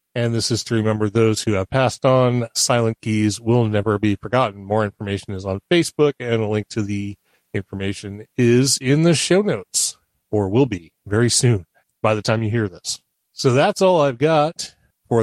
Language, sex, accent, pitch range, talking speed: English, male, American, 110-140 Hz, 195 wpm